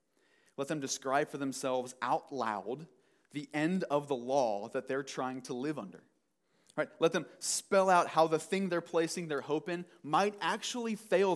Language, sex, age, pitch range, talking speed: English, male, 30-49, 150-190 Hz, 180 wpm